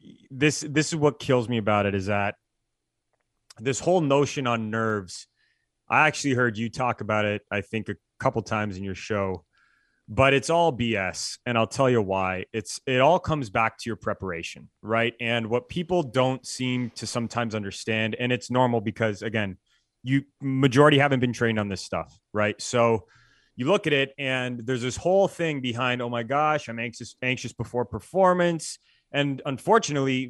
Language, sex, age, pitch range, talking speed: English, male, 30-49, 115-145 Hz, 180 wpm